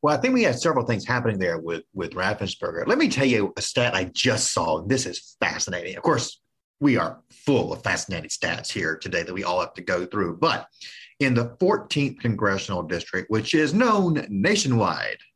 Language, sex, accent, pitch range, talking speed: English, male, American, 100-140 Hz, 200 wpm